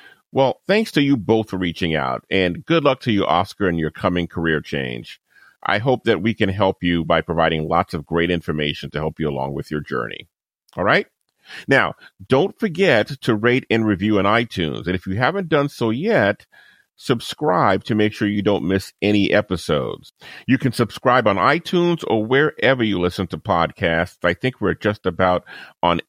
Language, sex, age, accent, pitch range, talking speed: English, male, 40-59, American, 85-125 Hz, 190 wpm